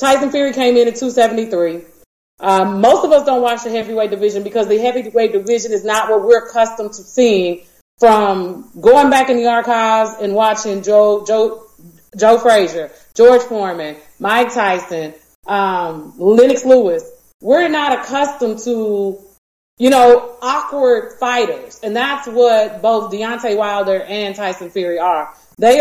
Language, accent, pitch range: English, American, 200-255 Hz